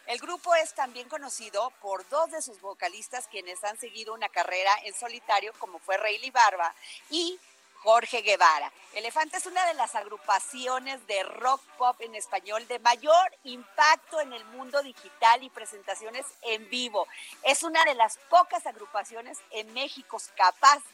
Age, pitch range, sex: 40-59, 230-310 Hz, female